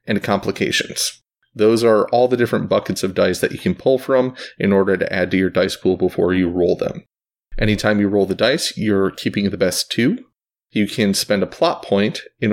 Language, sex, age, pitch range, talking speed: English, male, 30-49, 100-115 Hz, 210 wpm